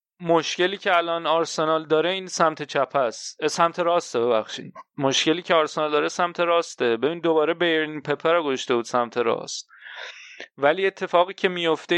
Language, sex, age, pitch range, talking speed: Persian, male, 30-49, 135-180 Hz, 155 wpm